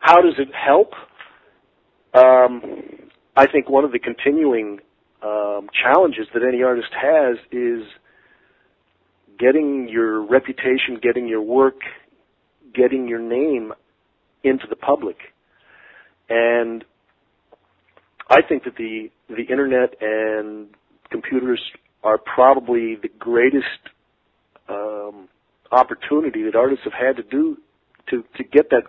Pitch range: 110-135 Hz